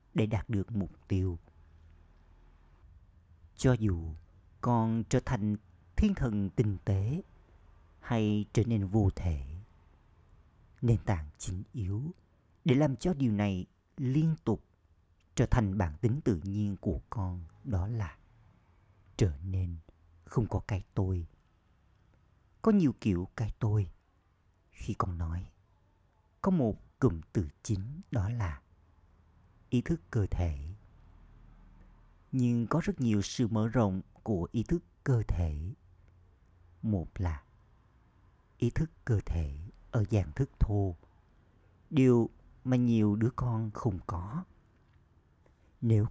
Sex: male